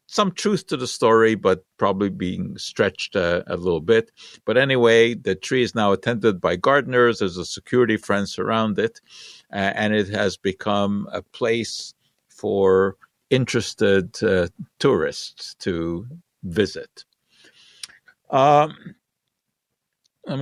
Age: 50-69